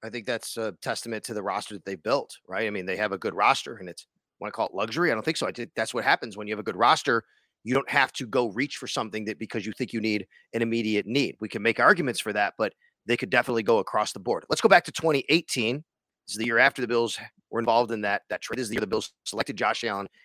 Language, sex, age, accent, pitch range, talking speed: English, male, 30-49, American, 115-160 Hz, 295 wpm